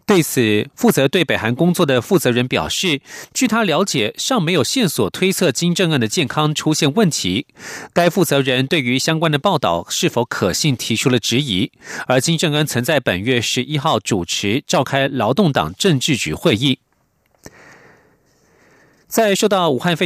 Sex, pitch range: male, 125-180 Hz